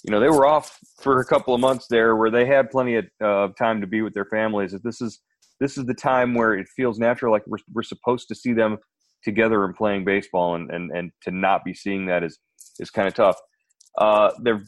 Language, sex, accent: English, male, American